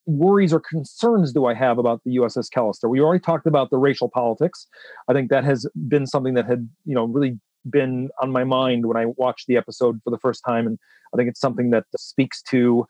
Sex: male